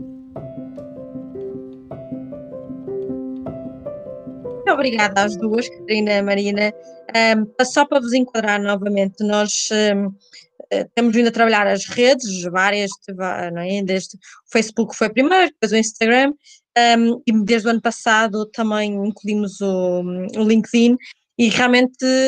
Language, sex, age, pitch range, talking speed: Portuguese, female, 20-39, 200-245 Hz, 125 wpm